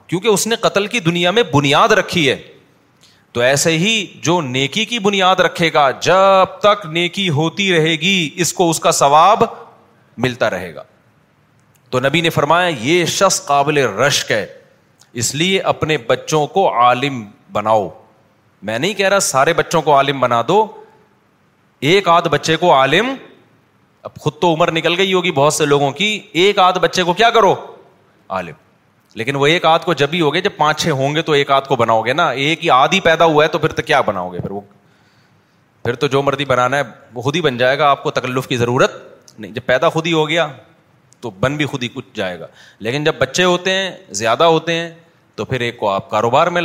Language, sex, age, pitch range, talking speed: Urdu, male, 30-49, 130-170 Hz, 210 wpm